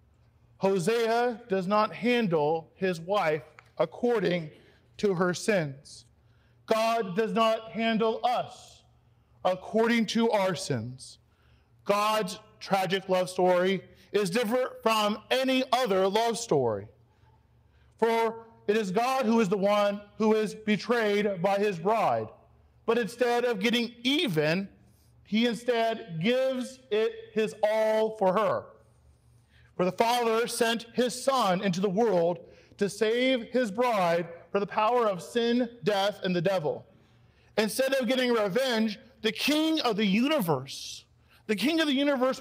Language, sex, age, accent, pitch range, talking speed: English, male, 40-59, American, 190-245 Hz, 130 wpm